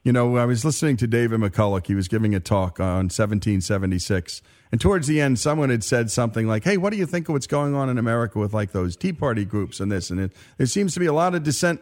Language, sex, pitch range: English, male, 105-165 Hz